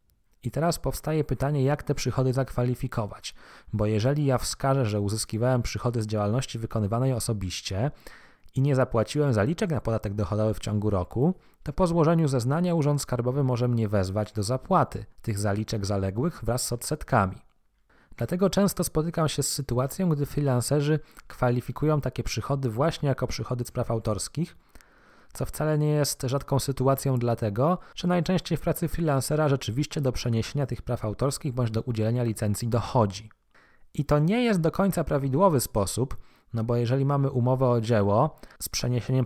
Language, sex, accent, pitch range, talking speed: Polish, male, native, 110-145 Hz, 155 wpm